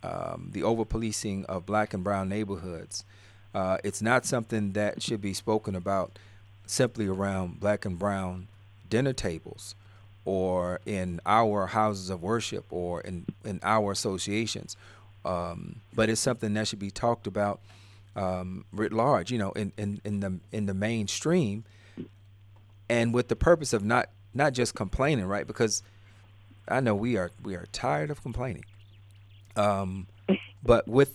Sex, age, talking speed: male, 40-59, 150 wpm